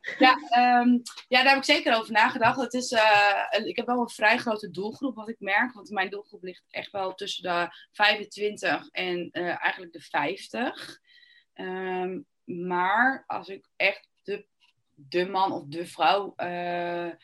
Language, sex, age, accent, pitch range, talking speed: Dutch, female, 20-39, Dutch, 175-210 Hz, 150 wpm